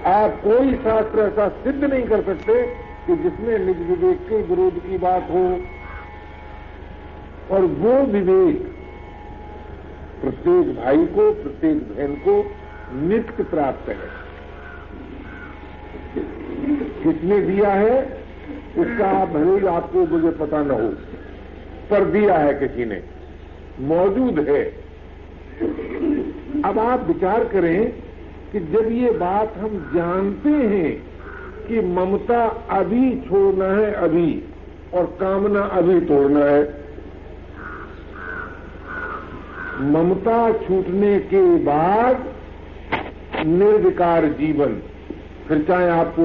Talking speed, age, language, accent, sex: 100 wpm, 50-69, Hindi, native, male